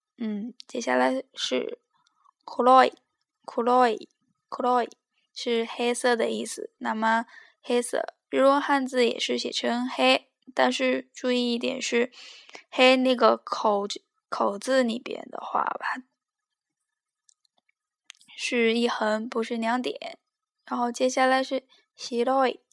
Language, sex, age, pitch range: Chinese, female, 10-29, 230-270 Hz